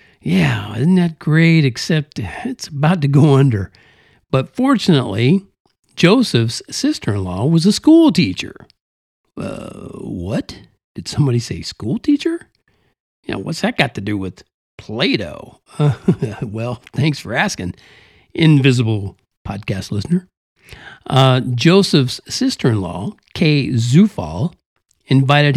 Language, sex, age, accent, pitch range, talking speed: English, male, 50-69, American, 115-165 Hz, 120 wpm